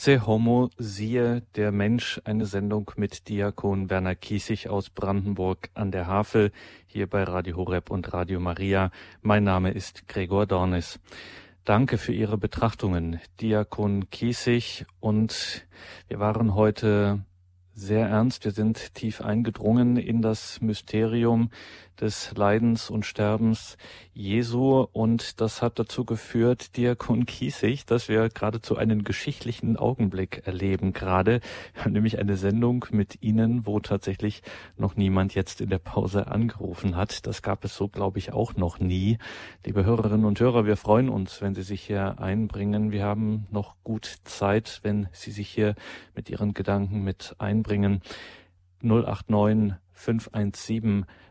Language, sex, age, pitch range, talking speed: German, male, 40-59, 100-115 Hz, 140 wpm